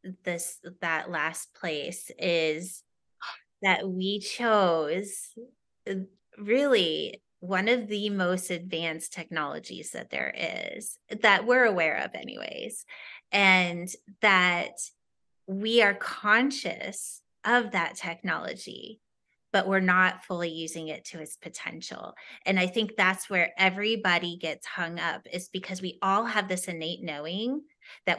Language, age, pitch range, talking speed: English, 20-39, 180-225 Hz, 125 wpm